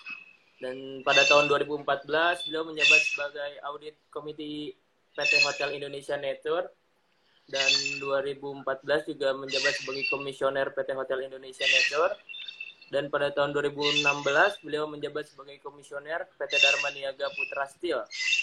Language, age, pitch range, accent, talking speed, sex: English, 20-39, 135-155 Hz, Indonesian, 115 wpm, male